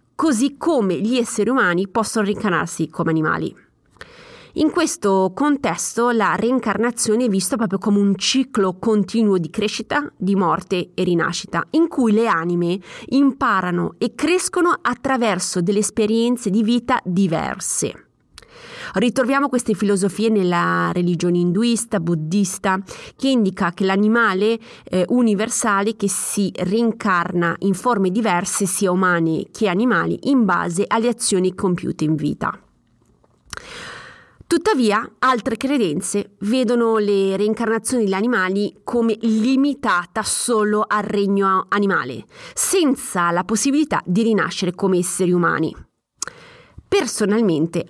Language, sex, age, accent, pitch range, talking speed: Italian, female, 30-49, native, 185-240 Hz, 115 wpm